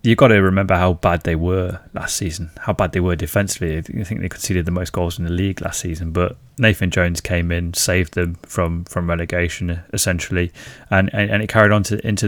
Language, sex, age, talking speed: English, male, 20-39, 225 wpm